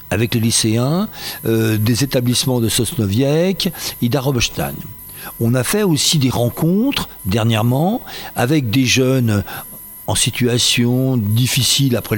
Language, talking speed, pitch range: French, 120 wpm, 110-145 Hz